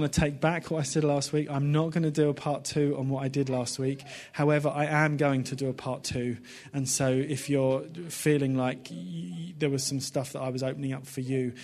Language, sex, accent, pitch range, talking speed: English, male, British, 125-145 Hz, 255 wpm